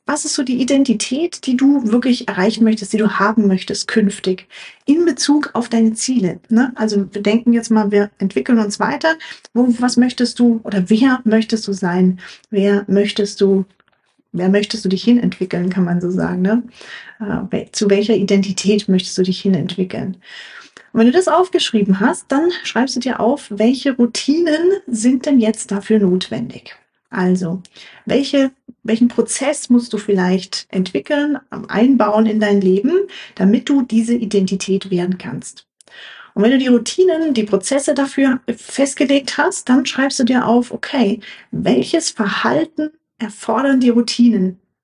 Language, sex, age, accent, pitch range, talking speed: German, female, 40-59, German, 200-255 Hz, 150 wpm